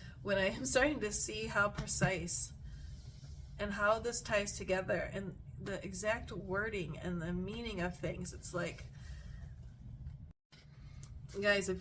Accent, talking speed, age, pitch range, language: American, 130 wpm, 30-49, 180-205 Hz, English